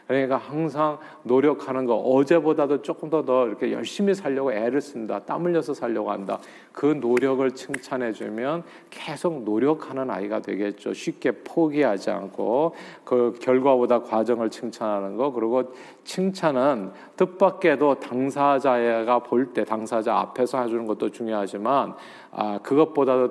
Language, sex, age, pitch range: Korean, male, 40-59, 115-155 Hz